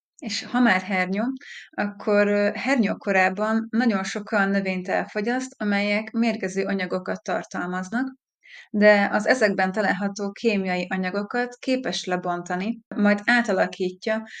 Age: 20-39